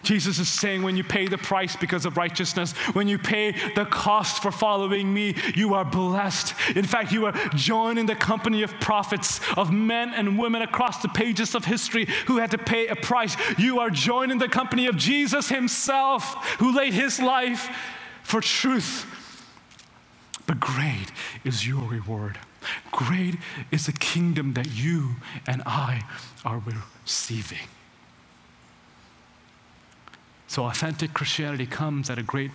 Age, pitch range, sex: 30-49, 130-200 Hz, male